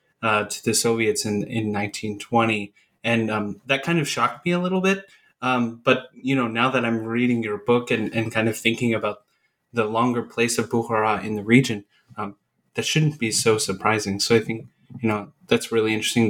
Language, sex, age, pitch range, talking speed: English, male, 20-39, 110-130 Hz, 205 wpm